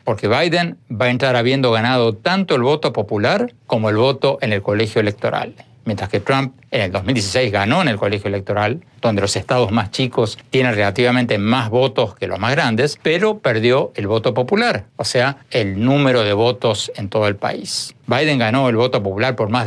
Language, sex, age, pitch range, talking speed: Spanish, male, 60-79, 110-145 Hz, 195 wpm